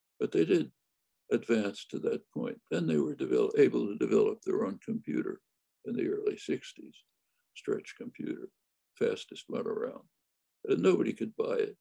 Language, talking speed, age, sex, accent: English, 160 wpm, 60-79, male, American